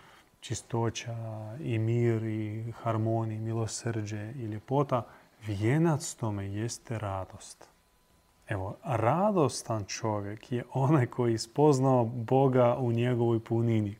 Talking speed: 105 wpm